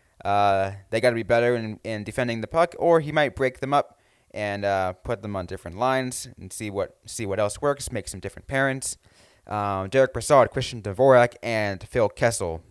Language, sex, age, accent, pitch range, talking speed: English, male, 20-39, American, 95-125 Hz, 205 wpm